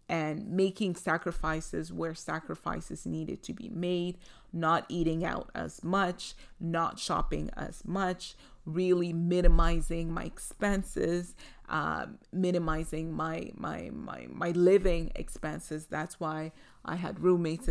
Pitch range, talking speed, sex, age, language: 165-190 Hz, 120 wpm, female, 30-49, English